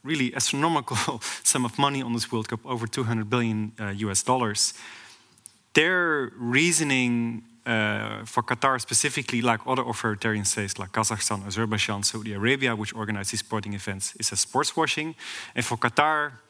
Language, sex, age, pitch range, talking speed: Dutch, male, 30-49, 110-130 Hz, 155 wpm